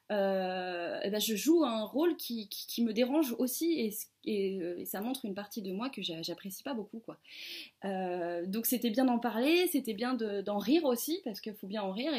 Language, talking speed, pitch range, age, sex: French, 200 wpm, 205-275 Hz, 20-39, female